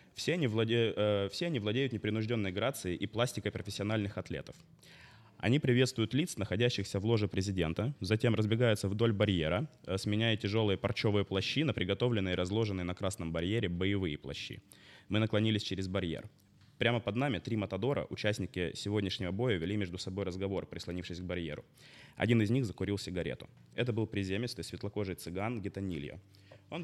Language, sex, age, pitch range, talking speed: Russian, male, 20-39, 95-120 Hz, 150 wpm